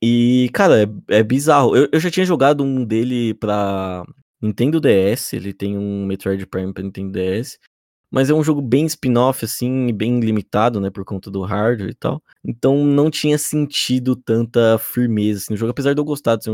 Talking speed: 195 wpm